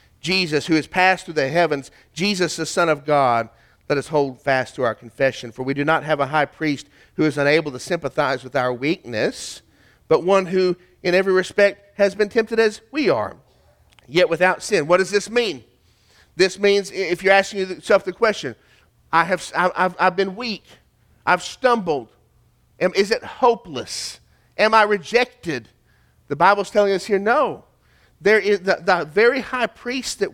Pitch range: 120-190 Hz